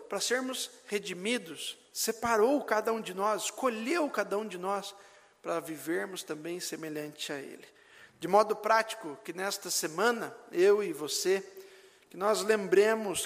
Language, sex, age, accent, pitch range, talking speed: Portuguese, male, 50-69, Brazilian, 170-225 Hz, 140 wpm